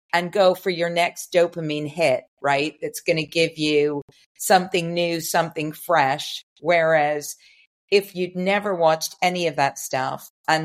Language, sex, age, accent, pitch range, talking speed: English, female, 50-69, American, 155-180 Hz, 150 wpm